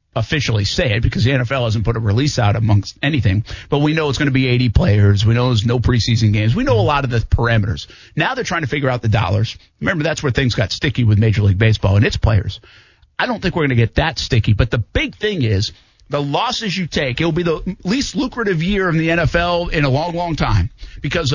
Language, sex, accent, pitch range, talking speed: English, male, American, 110-145 Hz, 250 wpm